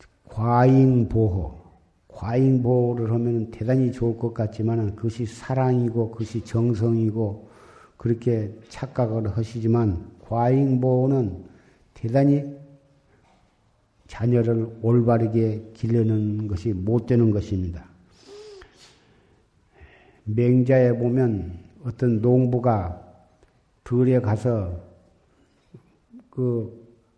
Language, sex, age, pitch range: Korean, male, 50-69, 110-125 Hz